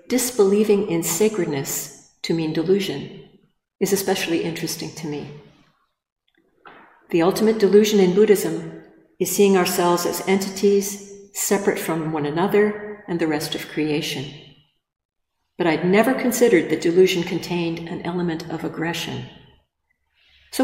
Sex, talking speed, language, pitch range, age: female, 120 wpm, English, 160-200 Hz, 50-69